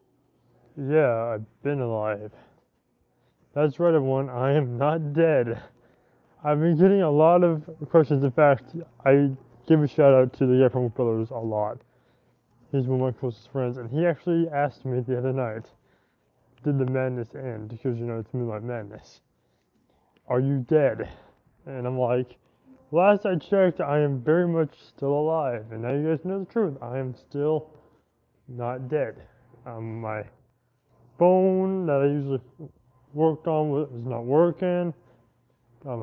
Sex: male